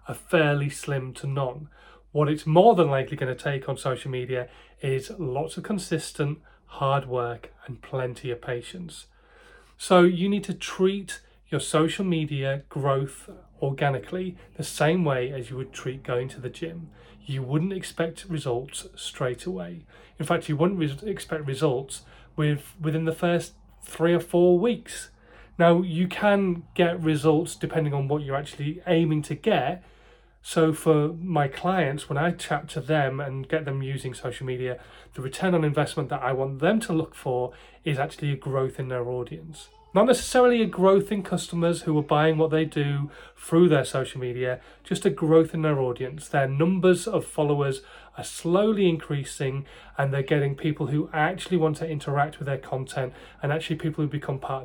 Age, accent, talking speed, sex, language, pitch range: 30-49, British, 175 wpm, male, English, 135-170 Hz